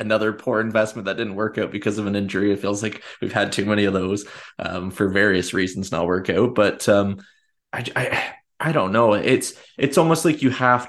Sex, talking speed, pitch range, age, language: male, 220 wpm, 95-110 Hz, 20-39, English